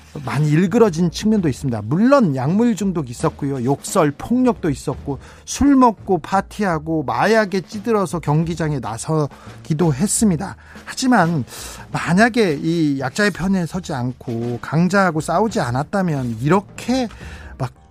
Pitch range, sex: 130-180 Hz, male